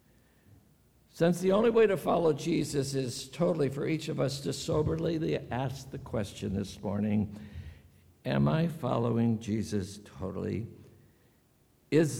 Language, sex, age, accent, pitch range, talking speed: English, male, 60-79, American, 115-165 Hz, 130 wpm